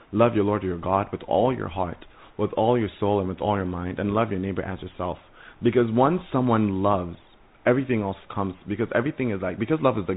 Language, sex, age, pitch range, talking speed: English, male, 30-49, 95-120 Hz, 230 wpm